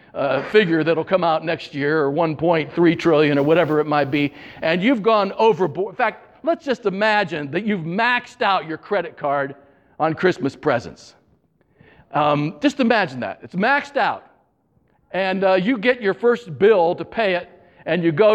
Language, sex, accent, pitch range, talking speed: English, male, American, 145-205 Hz, 175 wpm